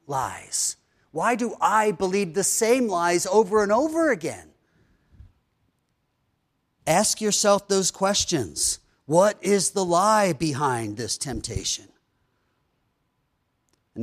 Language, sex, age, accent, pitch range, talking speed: English, male, 40-59, American, 140-190 Hz, 105 wpm